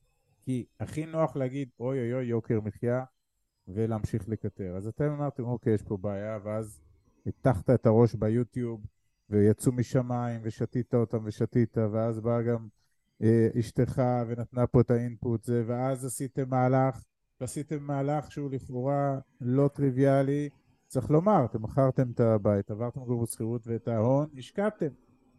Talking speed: 140 wpm